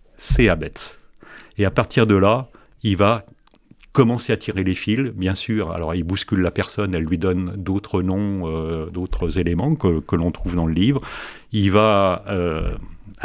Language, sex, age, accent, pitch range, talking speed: French, male, 40-59, French, 95-110 Hz, 175 wpm